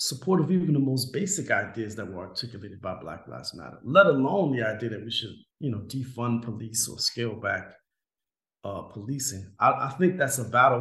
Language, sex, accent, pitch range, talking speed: English, male, American, 105-135 Hz, 200 wpm